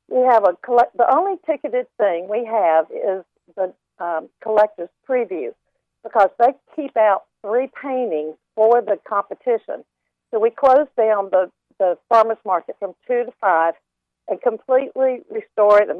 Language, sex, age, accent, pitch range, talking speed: English, female, 50-69, American, 190-250 Hz, 155 wpm